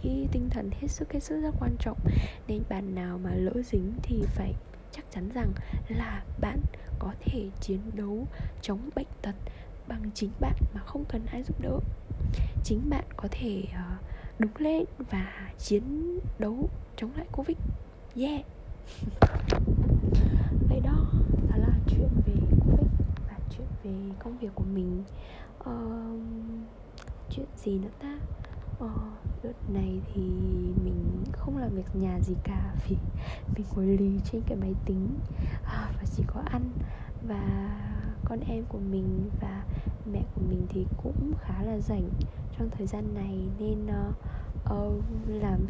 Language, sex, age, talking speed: Vietnamese, female, 10-29, 145 wpm